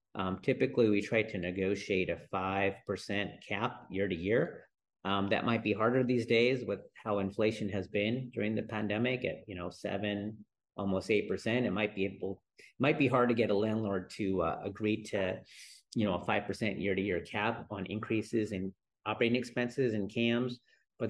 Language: English